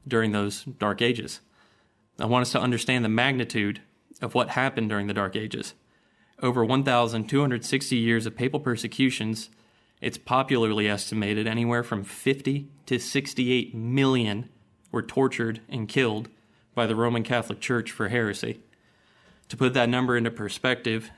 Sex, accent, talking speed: male, American, 140 wpm